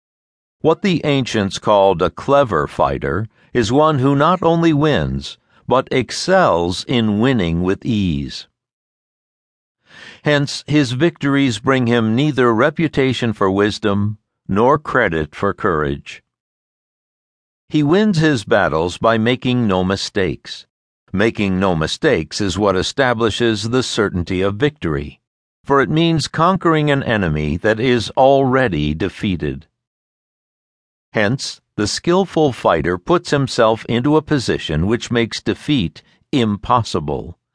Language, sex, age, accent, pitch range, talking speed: English, male, 60-79, American, 95-145 Hz, 115 wpm